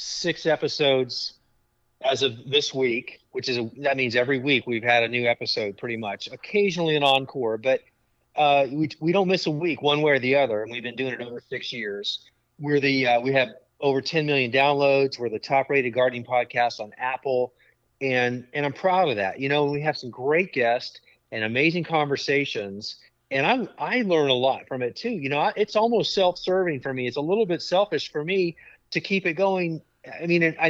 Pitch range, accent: 125-160 Hz, American